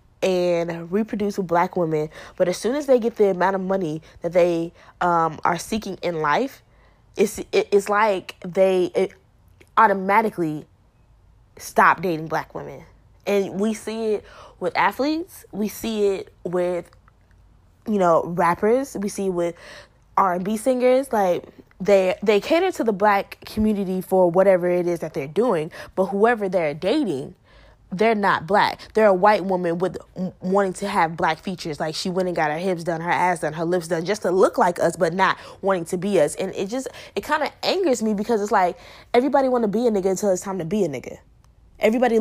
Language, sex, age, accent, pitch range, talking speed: English, female, 20-39, American, 175-215 Hz, 190 wpm